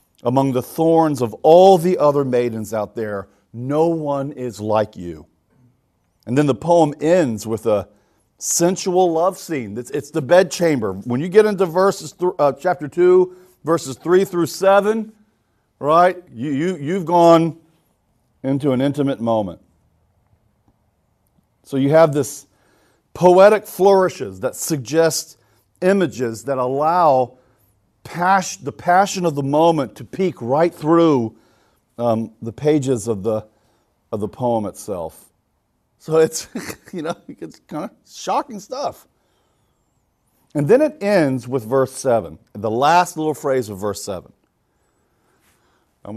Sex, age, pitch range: male, 40-59, 115-165 Hz